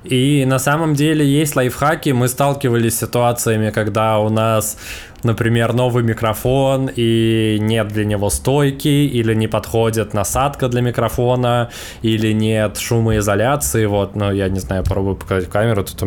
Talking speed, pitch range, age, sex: 150 wpm, 100-115 Hz, 20-39, male